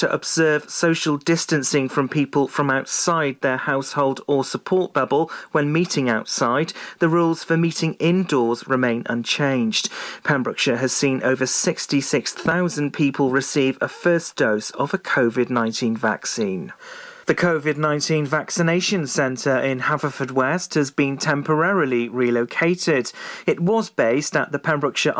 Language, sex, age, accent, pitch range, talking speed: English, male, 40-59, British, 130-165 Hz, 130 wpm